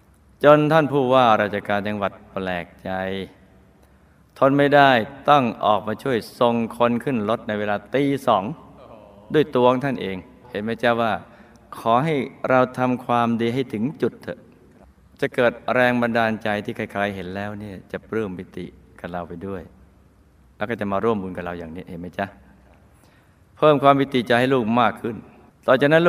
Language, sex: Thai, male